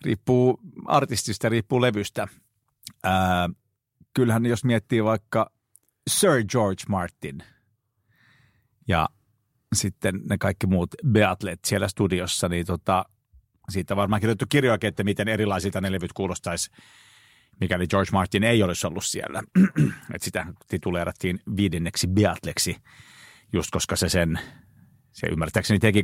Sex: male